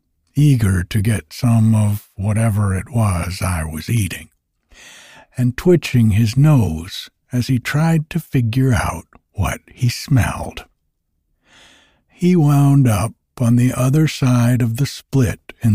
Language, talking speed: English, 135 wpm